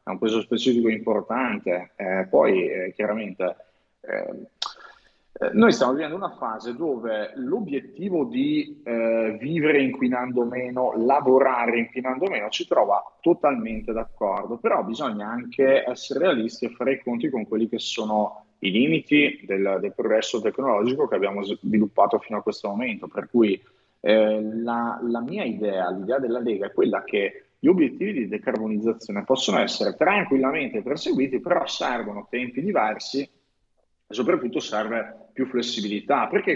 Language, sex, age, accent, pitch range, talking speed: Italian, male, 30-49, native, 115-190 Hz, 140 wpm